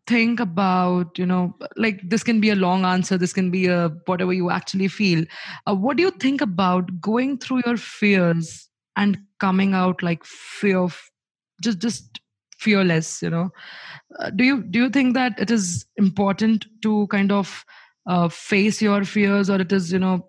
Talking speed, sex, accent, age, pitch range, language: 185 wpm, female, Indian, 20-39, 180-215 Hz, English